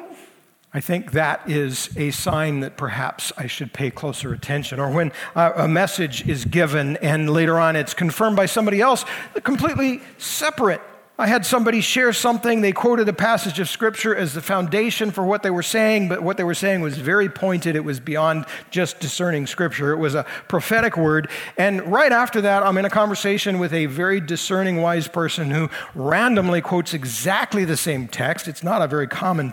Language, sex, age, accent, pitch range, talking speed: English, male, 50-69, American, 155-210 Hz, 190 wpm